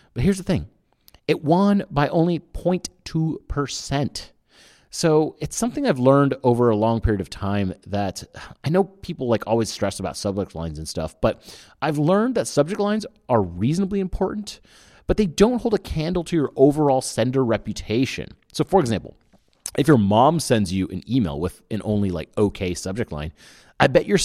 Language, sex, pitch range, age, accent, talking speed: English, male, 95-150 Hz, 30-49, American, 180 wpm